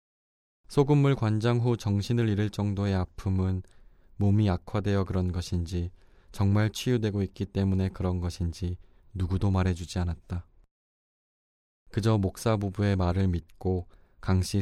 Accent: native